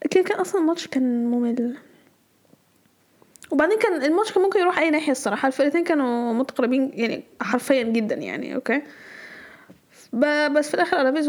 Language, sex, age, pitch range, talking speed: Arabic, female, 10-29, 255-320 Hz, 140 wpm